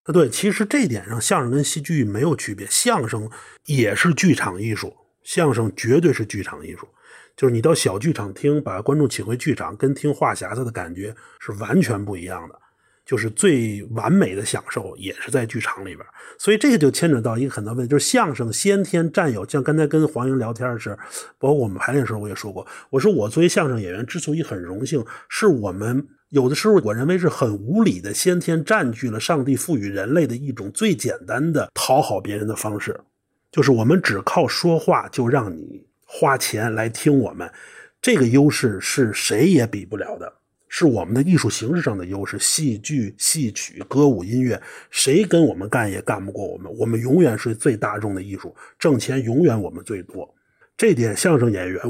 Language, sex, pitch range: Chinese, male, 110-155 Hz